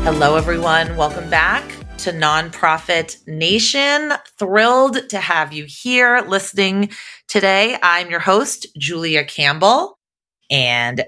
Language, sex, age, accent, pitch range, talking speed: English, female, 30-49, American, 145-200 Hz, 110 wpm